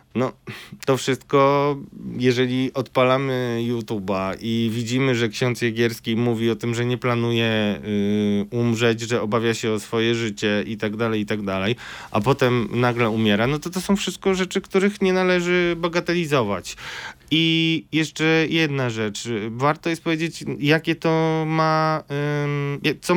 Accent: native